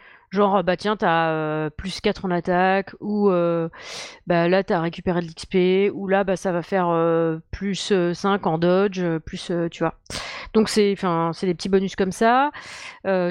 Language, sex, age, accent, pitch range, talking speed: French, female, 30-49, French, 175-210 Hz, 190 wpm